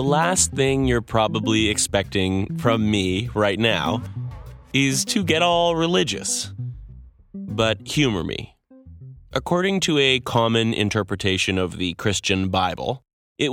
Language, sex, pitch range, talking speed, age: English, male, 100-135 Hz, 125 wpm, 30-49